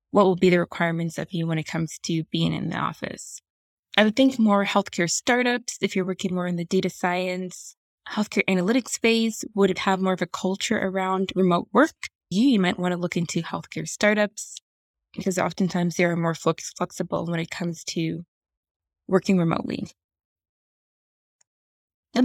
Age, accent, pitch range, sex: 20-39, American, 175-210 Hz, female